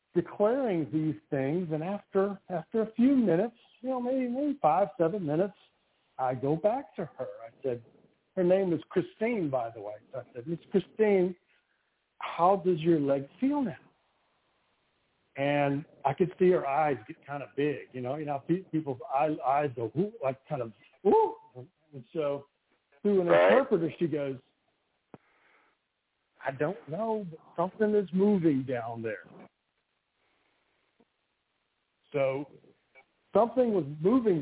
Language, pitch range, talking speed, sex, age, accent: English, 140-190 Hz, 145 wpm, male, 60-79, American